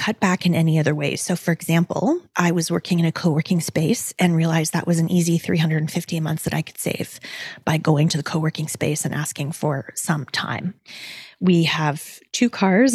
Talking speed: 200 wpm